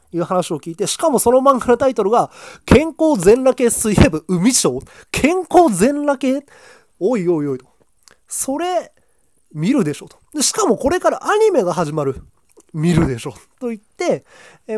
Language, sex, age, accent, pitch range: Japanese, male, 20-39, native, 155-235 Hz